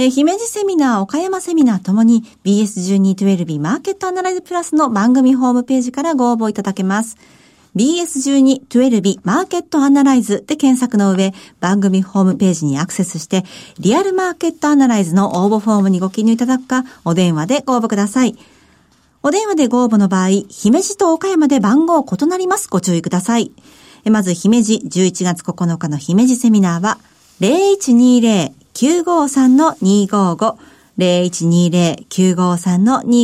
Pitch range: 195-295 Hz